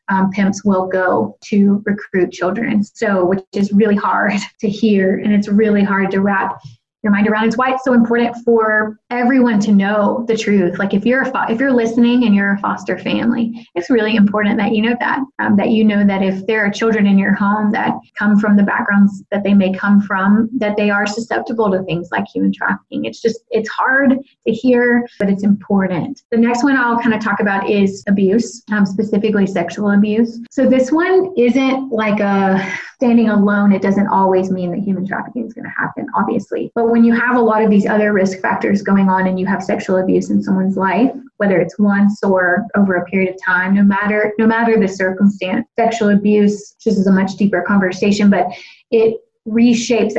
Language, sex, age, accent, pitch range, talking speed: English, female, 20-39, American, 195-230 Hz, 205 wpm